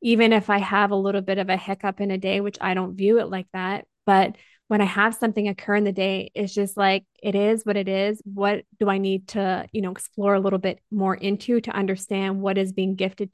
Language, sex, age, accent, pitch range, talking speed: English, female, 20-39, American, 195-210 Hz, 250 wpm